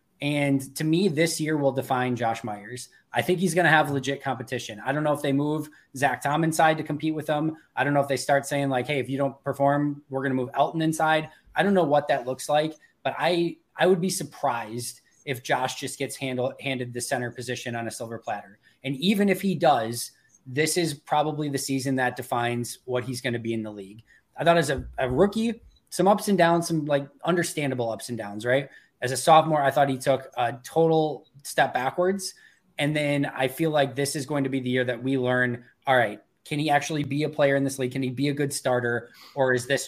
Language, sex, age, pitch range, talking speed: English, male, 20-39, 125-150 Hz, 235 wpm